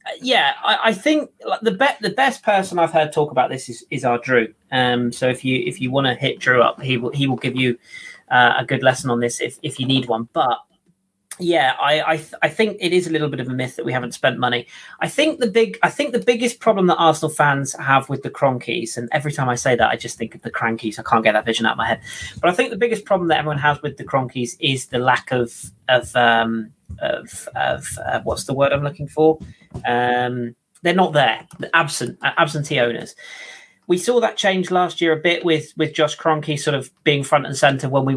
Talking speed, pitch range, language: 255 wpm, 130-175 Hz, English